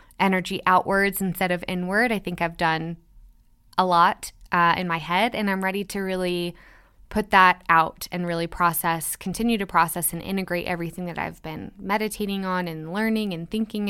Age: 10-29